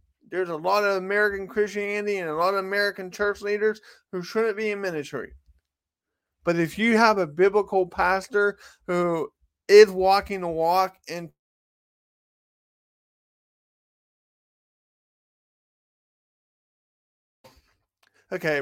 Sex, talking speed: male, 105 wpm